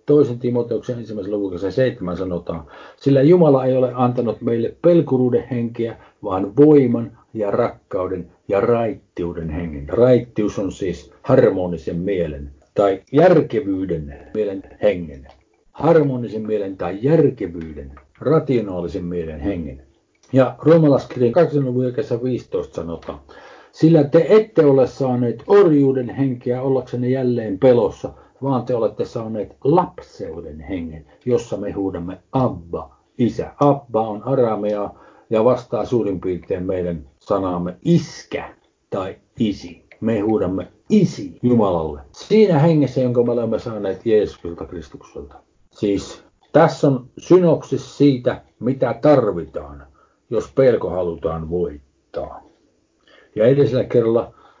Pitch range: 90-135 Hz